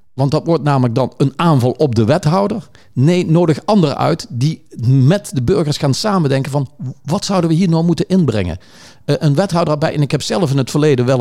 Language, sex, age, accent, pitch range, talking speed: Dutch, male, 50-69, Dutch, 130-180 Hz, 215 wpm